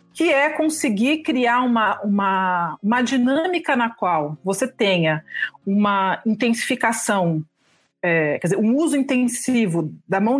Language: Portuguese